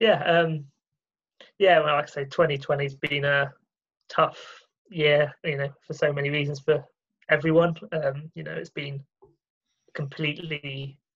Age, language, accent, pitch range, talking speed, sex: 20-39, English, British, 145-160 Hz, 140 wpm, male